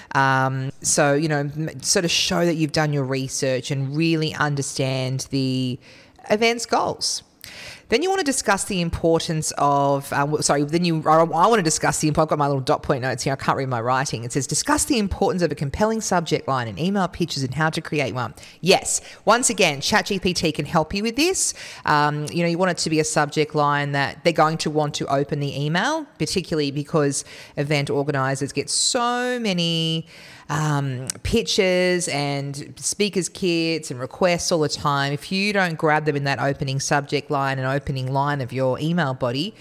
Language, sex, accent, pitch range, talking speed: English, female, Australian, 140-170 Hz, 200 wpm